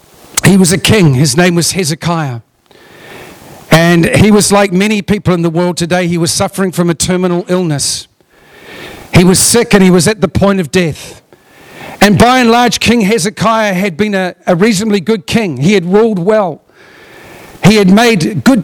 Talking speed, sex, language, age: 185 wpm, male, English, 50-69